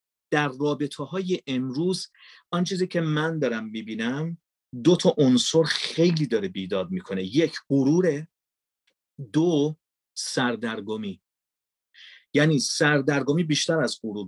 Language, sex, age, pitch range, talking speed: Persian, male, 40-59, 120-175 Hz, 110 wpm